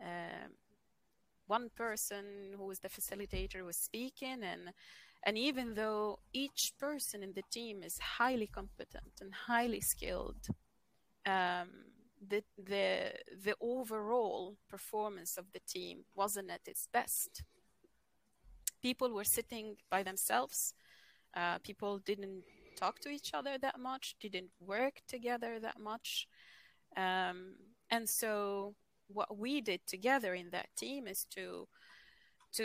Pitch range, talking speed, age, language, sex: 185-235 Hz, 130 wpm, 30-49, English, female